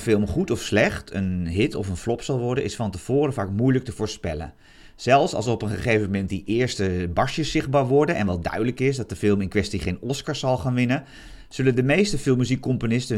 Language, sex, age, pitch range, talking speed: Dutch, male, 40-59, 100-135 Hz, 215 wpm